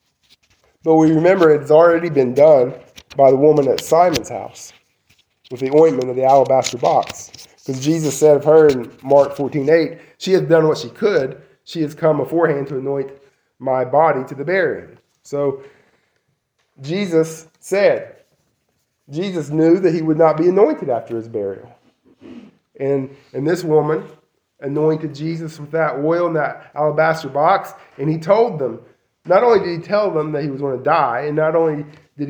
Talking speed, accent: 175 wpm, American